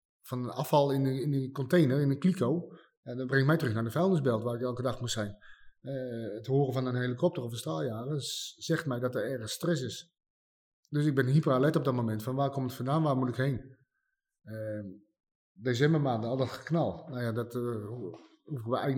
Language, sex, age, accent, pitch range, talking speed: Dutch, male, 30-49, Dutch, 120-140 Hz, 220 wpm